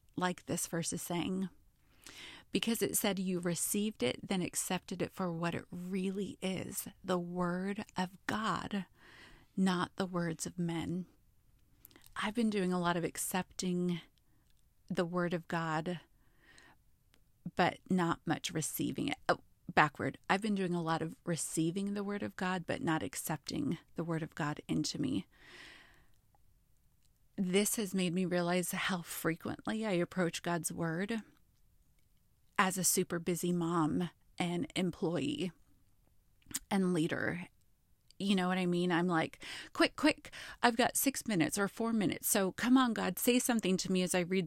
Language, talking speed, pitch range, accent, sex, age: English, 150 wpm, 170-200 Hz, American, female, 30-49